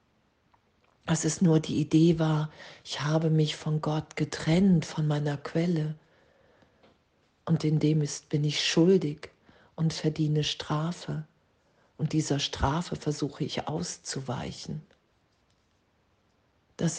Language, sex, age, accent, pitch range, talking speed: German, female, 50-69, German, 135-155 Hz, 110 wpm